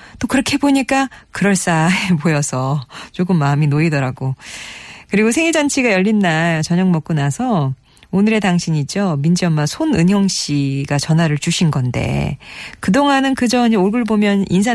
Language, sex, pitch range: Korean, female, 150-215 Hz